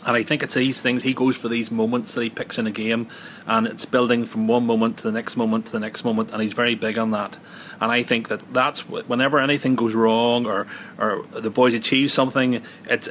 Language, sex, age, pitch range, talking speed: English, male, 30-49, 115-135 Hz, 245 wpm